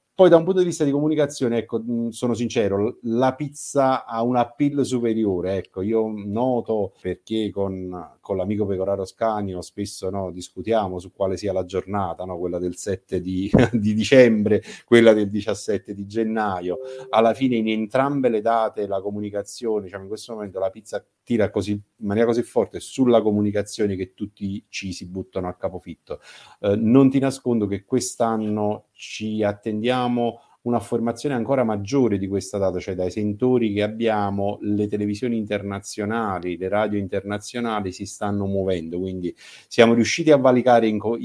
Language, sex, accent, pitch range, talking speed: Italian, male, native, 100-115 Hz, 160 wpm